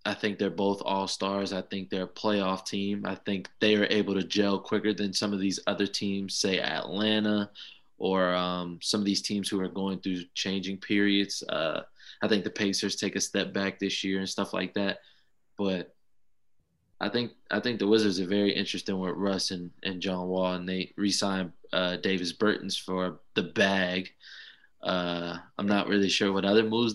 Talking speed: 195 wpm